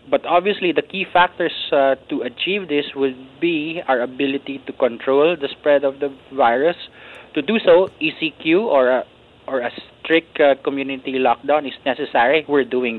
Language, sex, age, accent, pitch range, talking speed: English, male, 20-39, Filipino, 130-160 Hz, 160 wpm